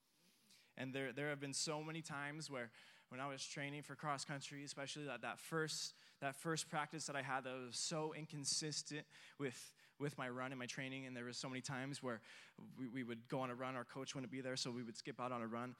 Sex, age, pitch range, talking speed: male, 20-39, 125-150 Hz, 245 wpm